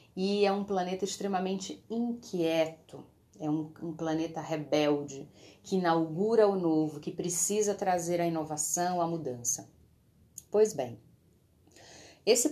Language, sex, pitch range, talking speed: Portuguese, female, 160-205 Hz, 120 wpm